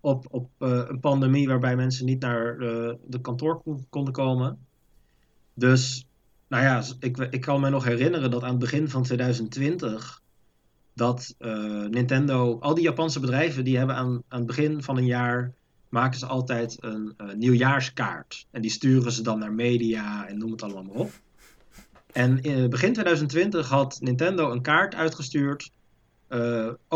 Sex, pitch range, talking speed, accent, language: male, 120-145 Hz, 165 wpm, Dutch, Dutch